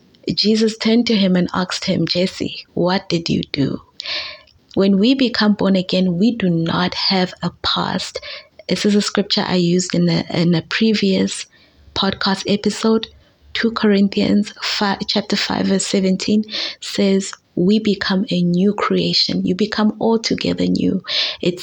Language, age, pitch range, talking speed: English, 20-39, 180-210 Hz, 145 wpm